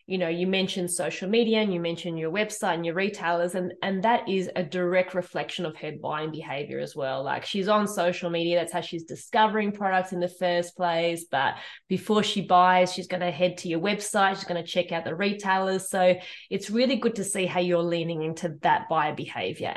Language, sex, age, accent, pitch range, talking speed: English, female, 20-39, Australian, 175-215 Hz, 220 wpm